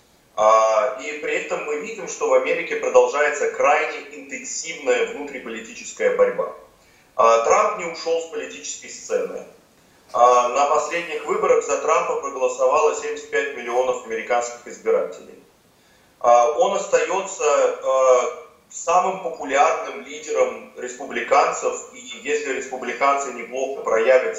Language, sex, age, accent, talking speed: Russian, male, 30-49, native, 100 wpm